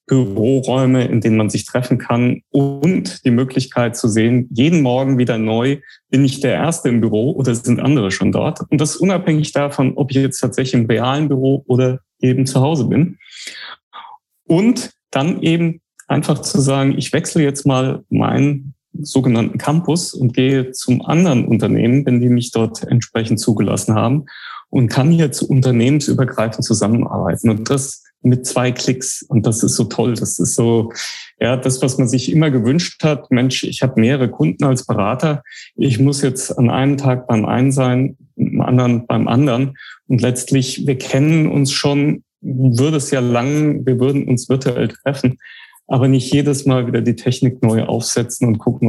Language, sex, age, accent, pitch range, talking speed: German, male, 30-49, German, 120-140 Hz, 175 wpm